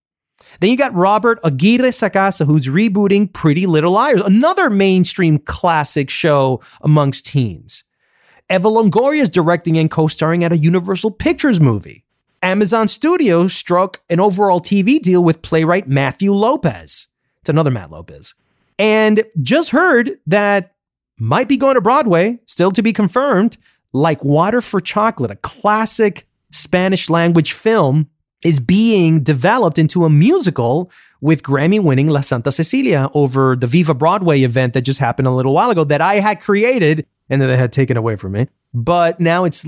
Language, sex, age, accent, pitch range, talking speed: English, male, 30-49, American, 145-210 Hz, 155 wpm